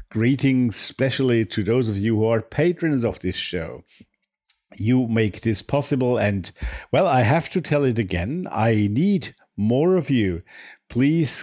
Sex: male